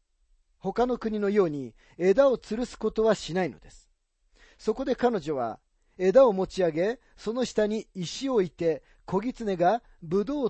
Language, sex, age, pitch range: Japanese, male, 40-59, 160-220 Hz